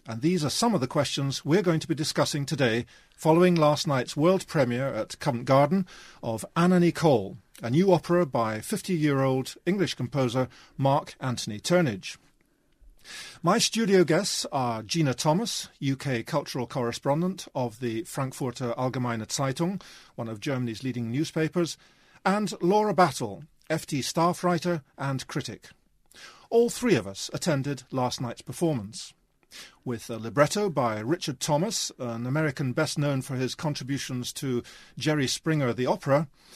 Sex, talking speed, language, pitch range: male, 145 wpm, English, 130-175 Hz